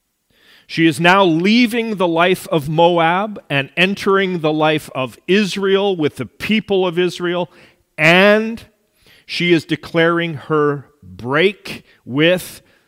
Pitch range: 145-195 Hz